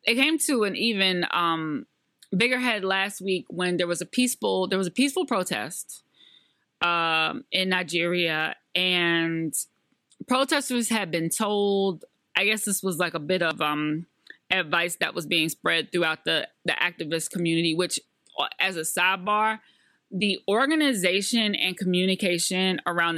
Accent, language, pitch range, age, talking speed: American, English, 165-195 Hz, 20-39, 150 wpm